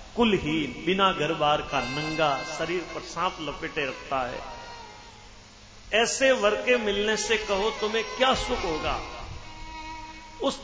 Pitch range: 165-230 Hz